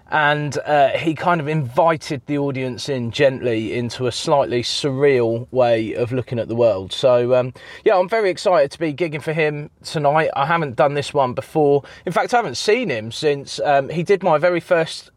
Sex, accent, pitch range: male, British, 120-185 Hz